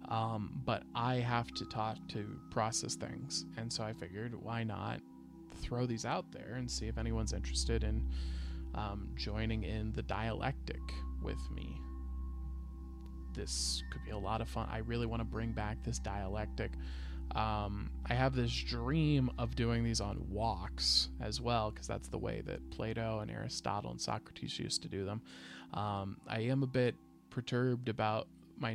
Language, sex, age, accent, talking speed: English, male, 20-39, American, 170 wpm